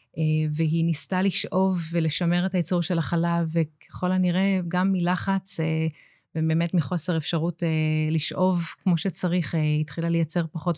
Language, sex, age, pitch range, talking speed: Hebrew, female, 30-49, 160-180 Hz, 120 wpm